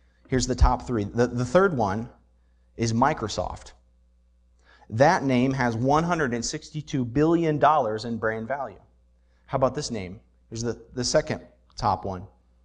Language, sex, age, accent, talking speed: English, male, 30-49, American, 135 wpm